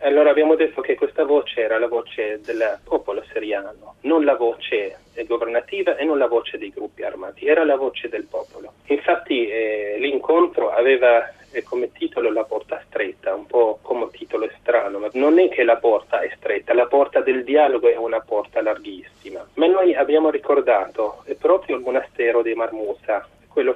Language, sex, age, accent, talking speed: Italian, male, 30-49, native, 175 wpm